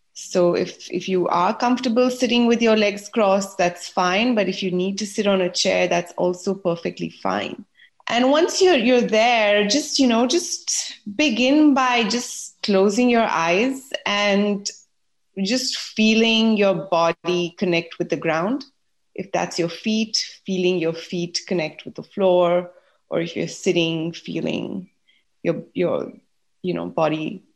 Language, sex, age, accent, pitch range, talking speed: English, female, 30-49, Indian, 180-230 Hz, 155 wpm